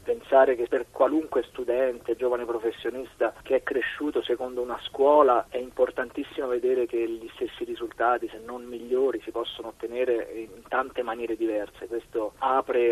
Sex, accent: male, native